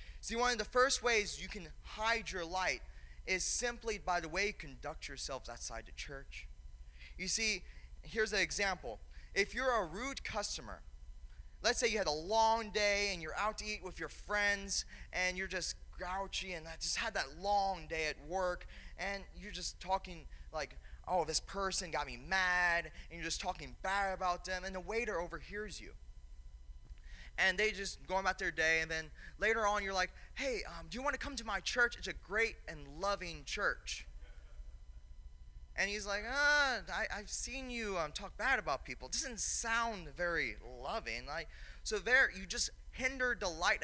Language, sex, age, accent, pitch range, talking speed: English, male, 20-39, American, 160-210 Hz, 190 wpm